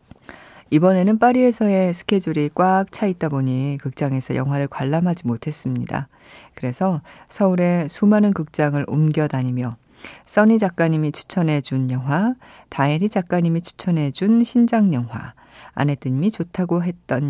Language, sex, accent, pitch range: Korean, female, native, 135-190 Hz